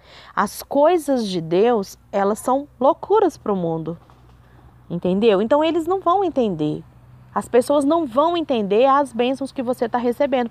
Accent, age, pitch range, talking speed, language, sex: Brazilian, 20-39, 170-245 Hz, 155 wpm, Portuguese, female